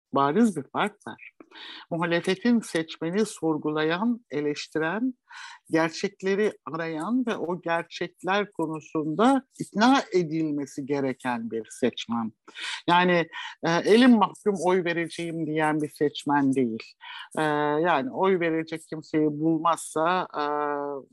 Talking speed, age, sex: 100 wpm, 60-79, male